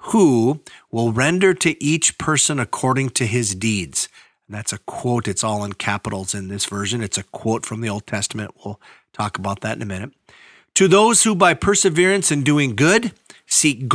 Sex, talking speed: male, 190 wpm